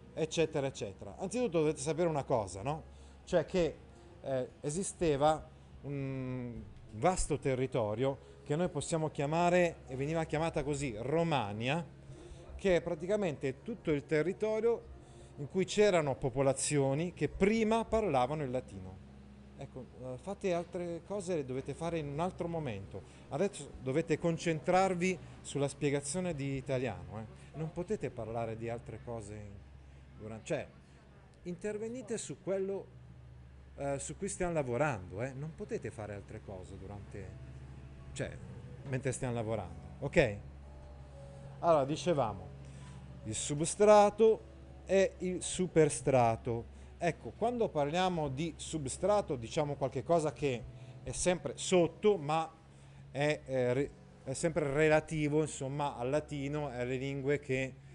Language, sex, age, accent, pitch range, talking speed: Italian, male, 30-49, native, 115-170 Hz, 120 wpm